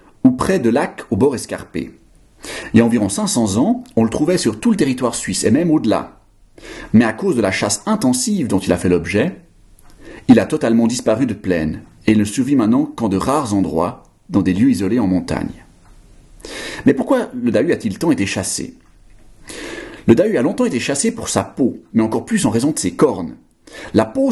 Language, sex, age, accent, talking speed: French, male, 40-59, French, 205 wpm